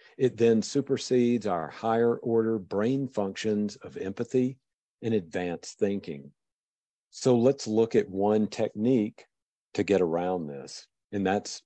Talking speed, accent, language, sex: 130 wpm, American, English, male